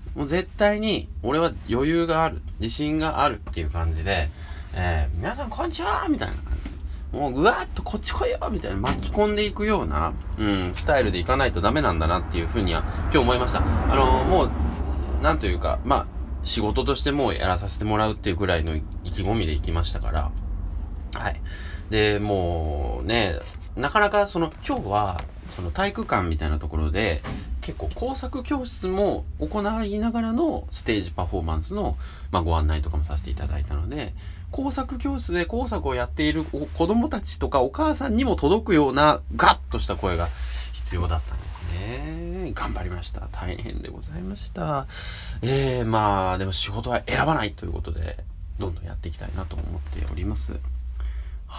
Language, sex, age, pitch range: Japanese, male, 20-39, 75-105 Hz